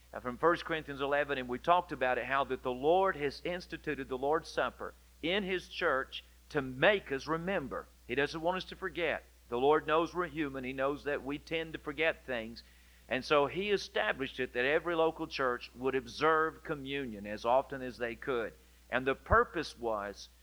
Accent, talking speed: American, 190 wpm